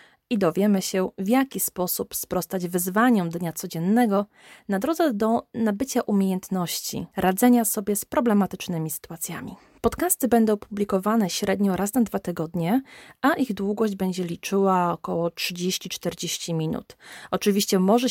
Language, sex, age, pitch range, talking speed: Polish, female, 20-39, 175-215 Hz, 125 wpm